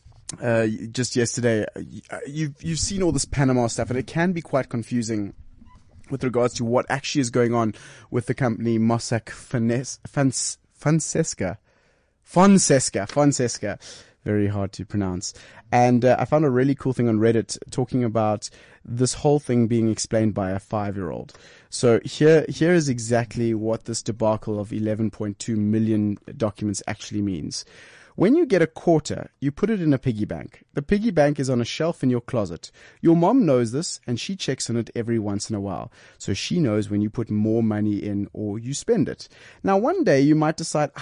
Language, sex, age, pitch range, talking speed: English, male, 20-39, 110-140 Hz, 185 wpm